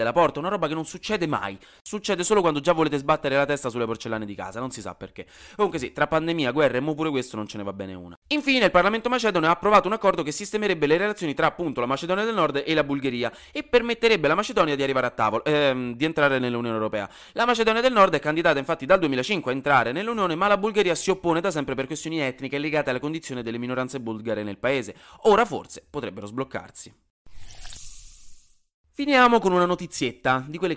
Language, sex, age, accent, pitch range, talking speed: Italian, male, 20-39, native, 120-180 Hz, 220 wpm